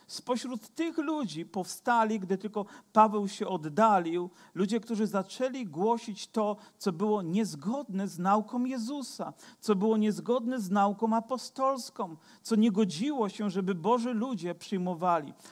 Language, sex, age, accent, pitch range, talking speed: Polish, male, 50-69, native, 195-245 Hz, 130 wpm